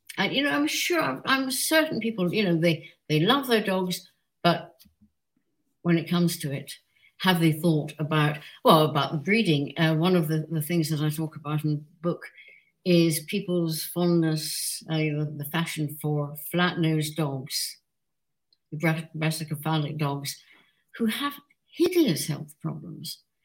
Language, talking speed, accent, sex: English, 145 wpm, British, female